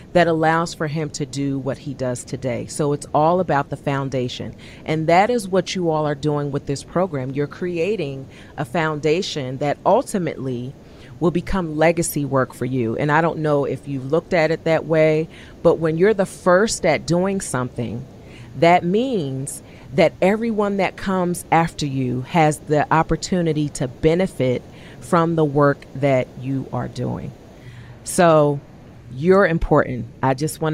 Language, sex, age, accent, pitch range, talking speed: English, female, 40-59, American, 130-165 Hz, 165 wpm